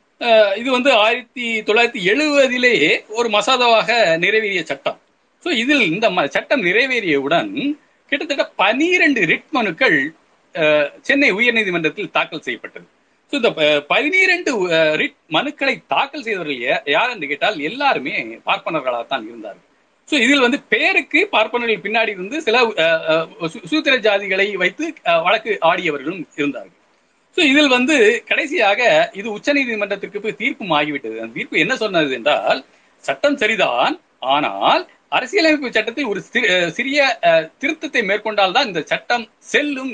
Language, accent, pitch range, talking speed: Tamil, native, 195-295 Hz, 110 wpm